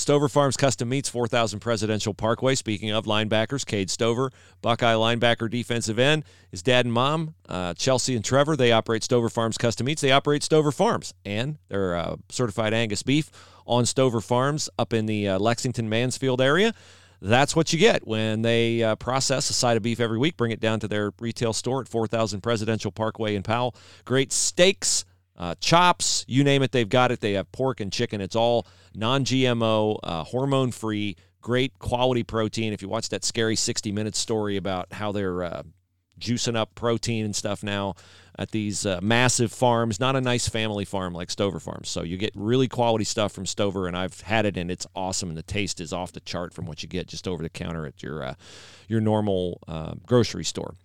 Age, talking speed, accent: 40-59, 195 wpm, American